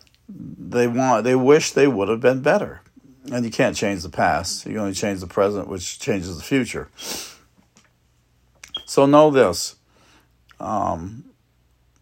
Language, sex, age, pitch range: English, male, 50-69, 95-120 Hz